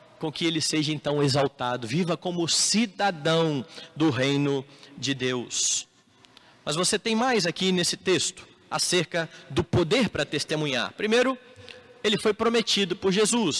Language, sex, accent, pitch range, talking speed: Portuguese, male, Brazilian, 185-255 Hz, 135 wpm